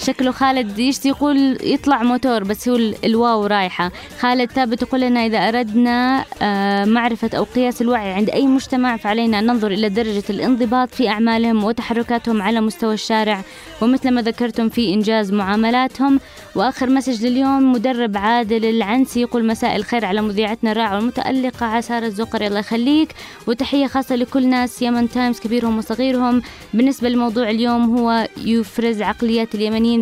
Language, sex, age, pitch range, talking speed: English, female, 20-39, 225-260 Hz, 145 wpm